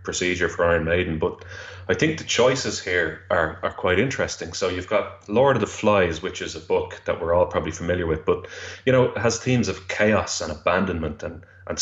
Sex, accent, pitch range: male, Irish, 85-115 Hz